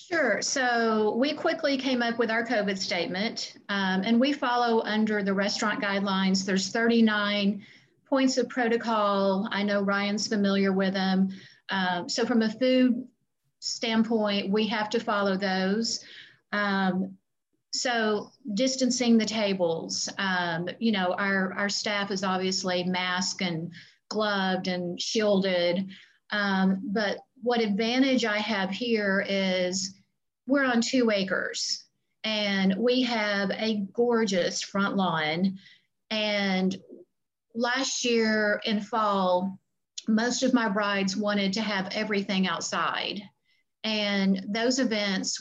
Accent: American